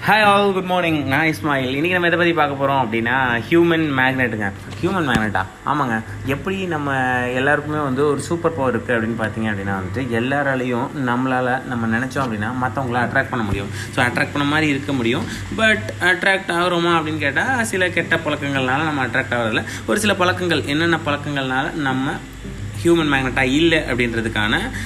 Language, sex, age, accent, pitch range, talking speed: Tamil, male, 20-39, native, 115-160 Hz, 160 wpm